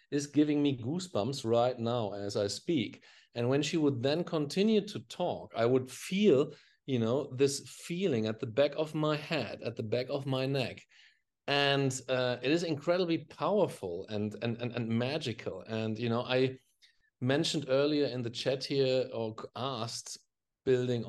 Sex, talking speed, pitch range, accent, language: male, 170 wpm, 115-140 Hz, German, English